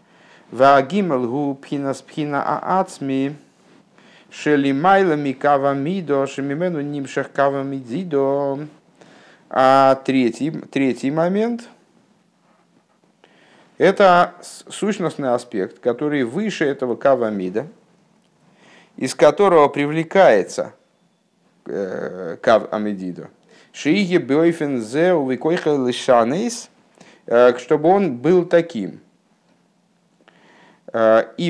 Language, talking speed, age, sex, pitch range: Russian, 40 wpm, 50-69, male, 130-180 Hz